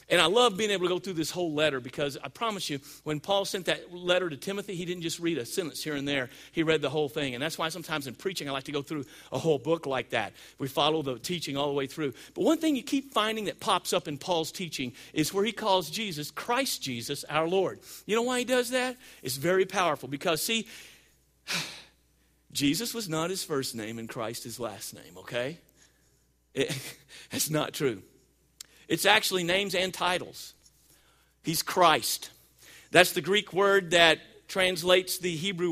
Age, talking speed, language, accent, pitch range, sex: 50-69, 205 wpm, English, American, 150-230 Hz, male